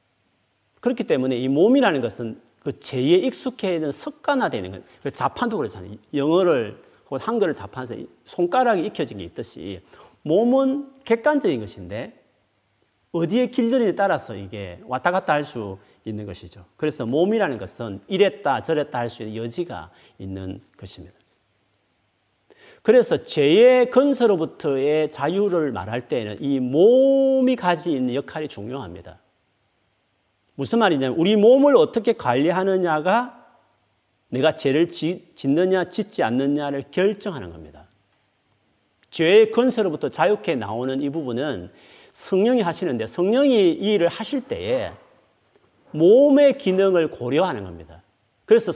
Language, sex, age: Korean, male, 40-59